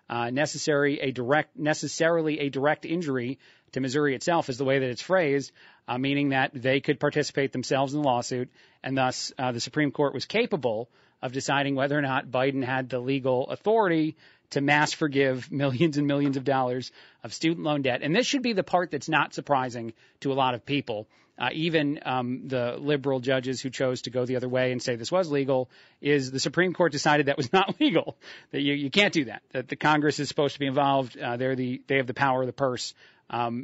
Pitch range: 130-155 Hz